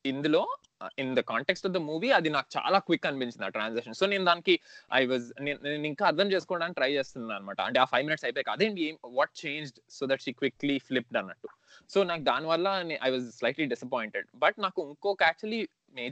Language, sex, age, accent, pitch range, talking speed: Telugu, male, 20-39, native, 130-195 Hz, 50 wpm